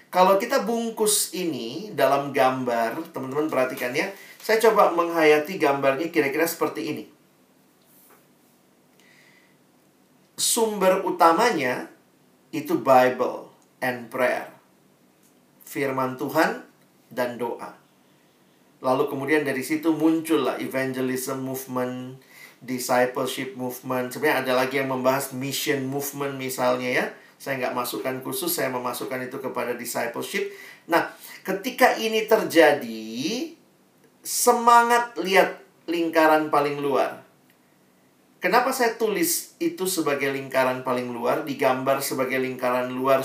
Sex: male